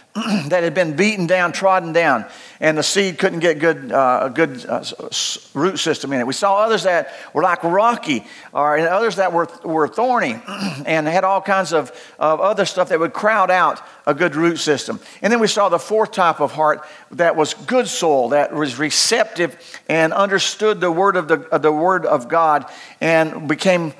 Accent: American